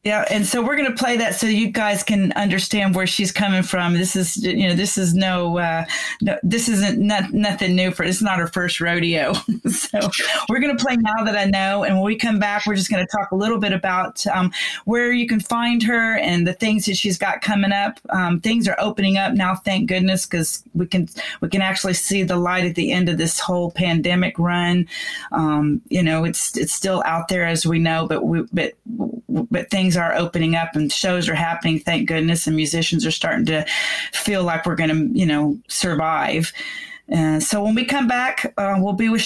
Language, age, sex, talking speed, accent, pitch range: English, 30-49, female, 220 wpm, American, 175-210 Hz